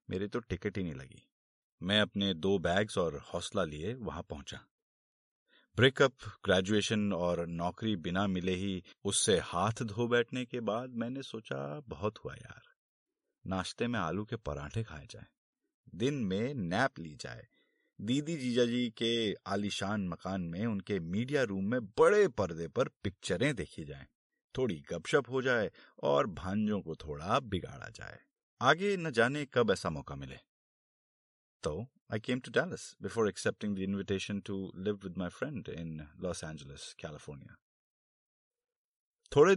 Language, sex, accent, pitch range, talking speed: Hindi, male, native, 90-120 Hz, 145 wpm